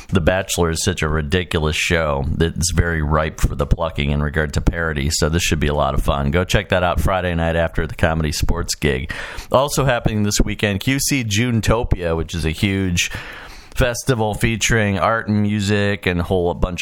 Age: 40-59